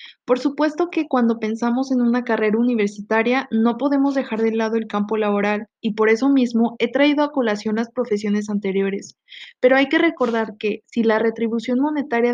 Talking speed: 180 wpm